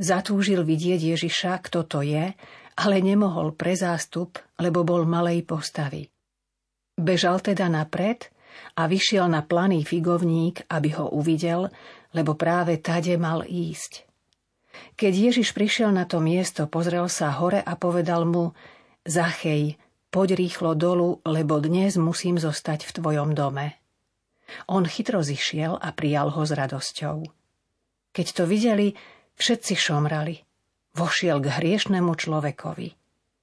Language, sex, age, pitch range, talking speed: Slovak, female, 40-59, 155-180 Hz, 125 wpm